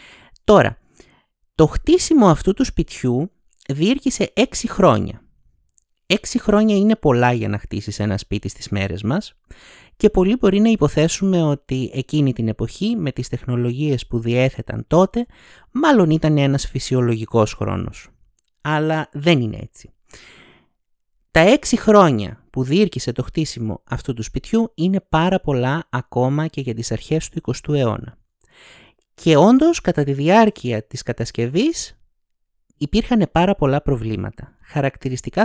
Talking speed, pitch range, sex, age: 130 wpm, 120-190 Hz, male, 30-49